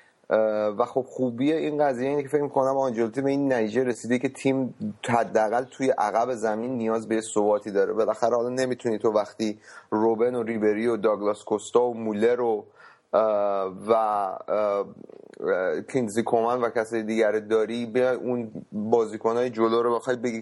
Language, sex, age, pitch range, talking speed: Persian, male, 30-49, 110-130 Hz, 155 wpm